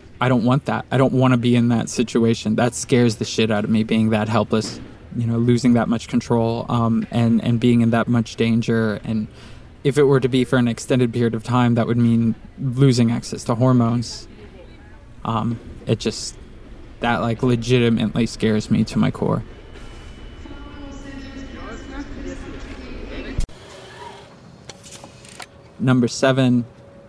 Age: 20-39